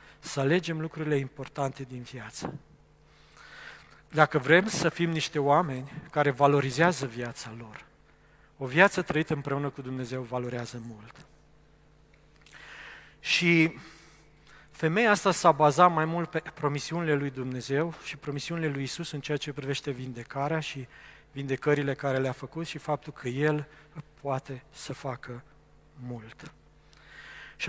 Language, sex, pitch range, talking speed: Romanian, male, 135-160 Hz, 125 wpm